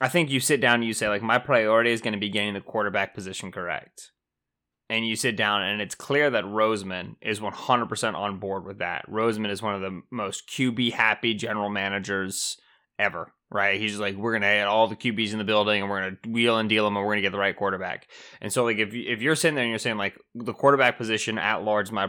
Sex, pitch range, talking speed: male, 105-125 Hz, 255 wpm